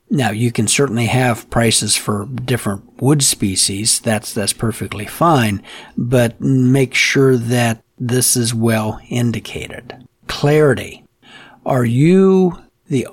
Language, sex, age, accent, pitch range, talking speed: English, male, 60-79, American, 115-140 Hz, 120 wpm